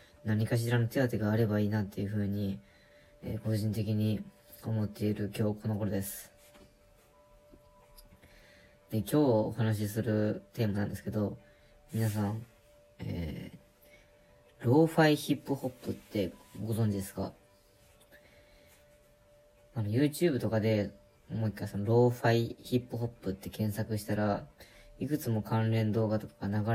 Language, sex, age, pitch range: Japanese, female, 20-39, 100-115 Hz